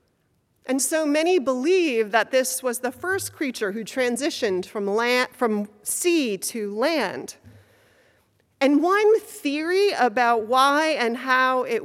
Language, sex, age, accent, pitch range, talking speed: English, female, 30-49, American, 185-265 Hz, 125 wpm